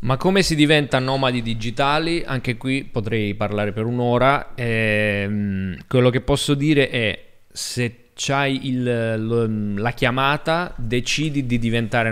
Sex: male